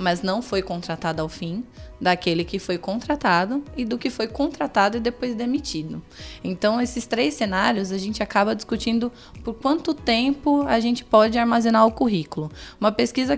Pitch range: 190-235 Hz